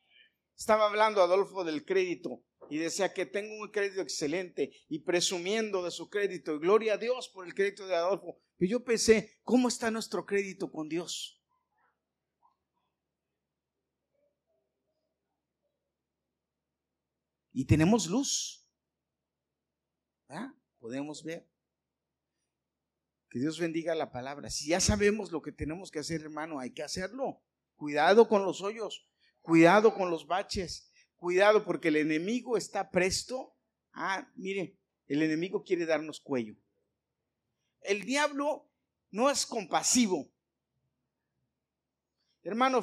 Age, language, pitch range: 50-69, Spanish, 160-225 Hz